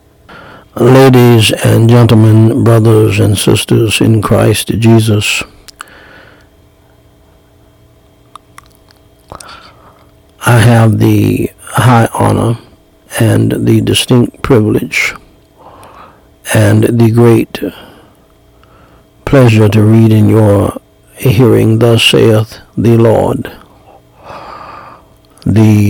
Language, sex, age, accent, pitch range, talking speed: English, male, 60-79, American, 105-120 Hz, 75 wpm